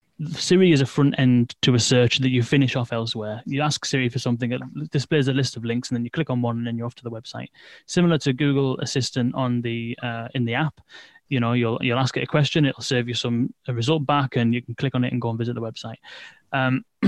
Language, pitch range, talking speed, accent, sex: English, 120-145 Hz, 265 wpm, British, male